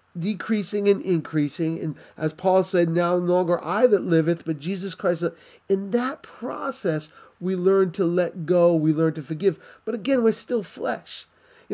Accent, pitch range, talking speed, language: American, 160-200 Hz, 175 wpm, English